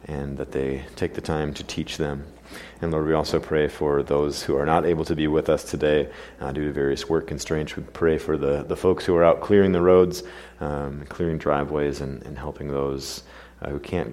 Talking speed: 225 wpm